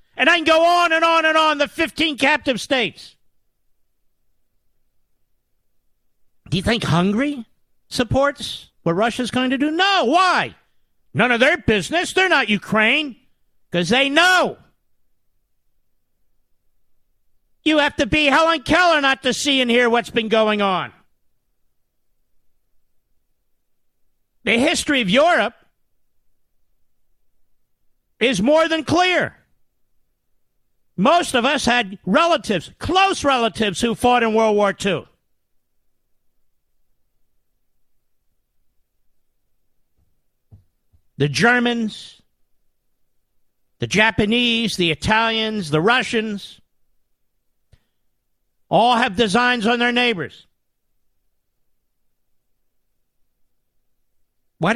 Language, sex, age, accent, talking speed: English, male, 50-69, American, 95 wpm